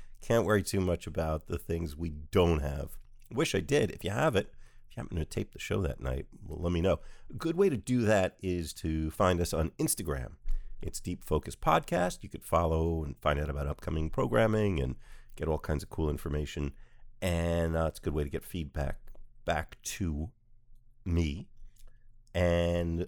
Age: 50-69